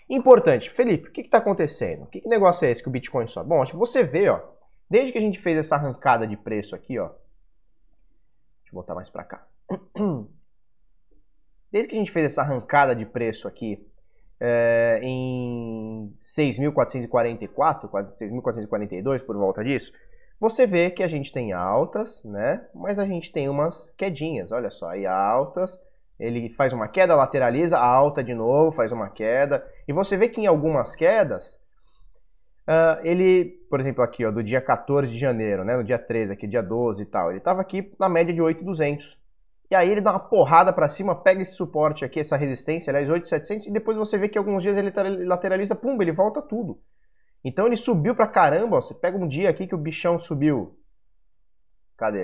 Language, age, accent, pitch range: Portuguese, 20-39, Brazilian, 125-195 Hz